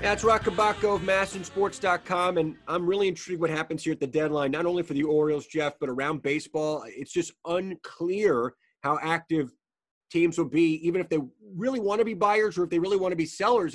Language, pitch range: English, 140-175 Hz